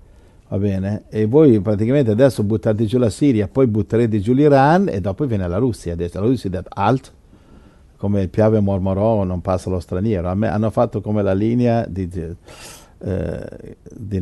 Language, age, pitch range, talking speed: Italian, 50-69, 90-115 Hz, 170 wpm